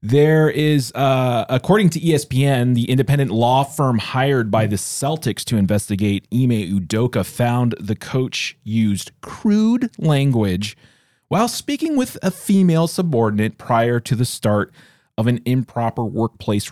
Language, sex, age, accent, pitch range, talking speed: English, male, 30-49, American, 110-140 Hz, 135 wpm